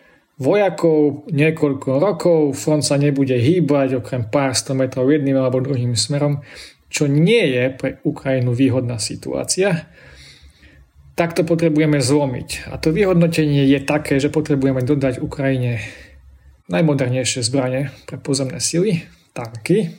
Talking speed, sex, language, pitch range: 125 wpm, male, Slovak, 130-165 Hz